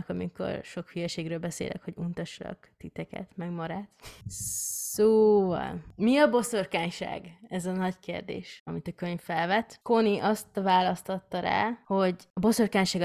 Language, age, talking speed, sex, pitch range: Hungarian, 20-39, 125 wpm, female, 165-200 Hz